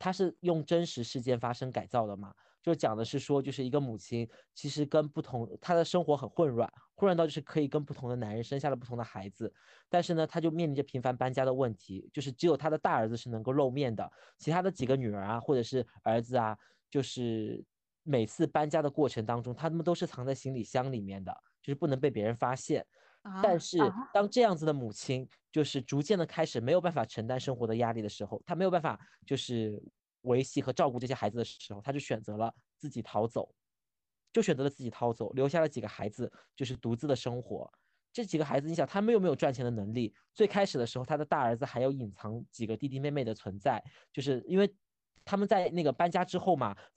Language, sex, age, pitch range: Chinese, male, 20-39, 120-160 Hz